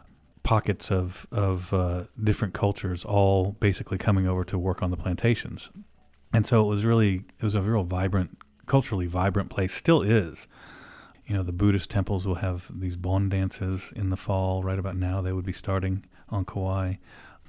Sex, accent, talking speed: male, American, 180 wpm